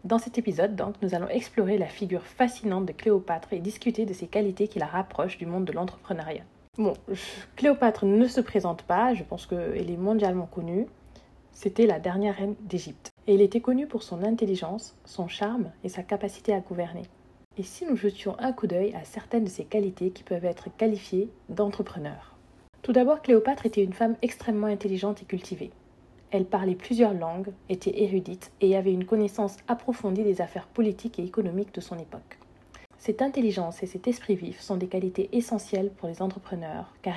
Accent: French